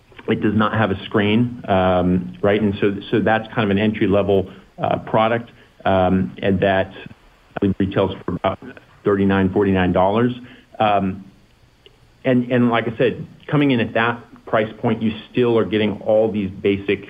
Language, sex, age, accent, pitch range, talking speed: English, male, 50-69, American, 95-110 Hz, 150 wpm